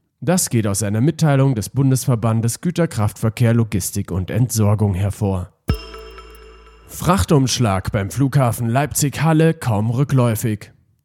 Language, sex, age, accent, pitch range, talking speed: German, male, 40-59, German, 110-150 Hz, 100 wpm